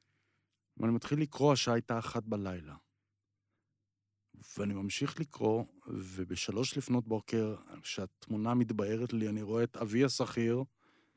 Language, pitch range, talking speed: Hebrew, 105-135 Hz, 115 wpm